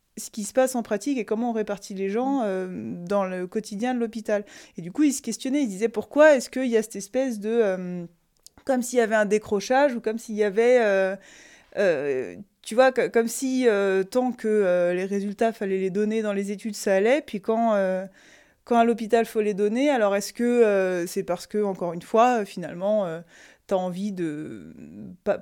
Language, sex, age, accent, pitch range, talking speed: French, female, 20-39, French, 190-230 Hz, 220 wpm